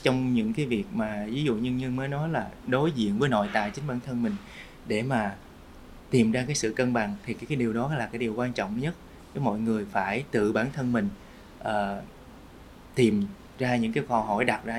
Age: 20-39